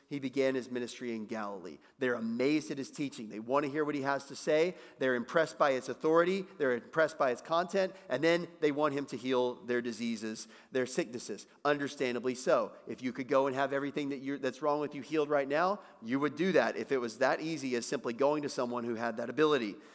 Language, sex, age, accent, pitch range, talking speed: English, male, 40-59, American, 130-190 Hz, 230 wpm